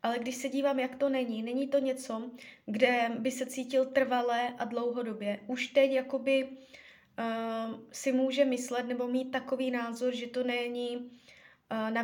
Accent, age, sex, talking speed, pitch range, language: native, 20-39, female, 165 wpm, 230-270 Hz, Czech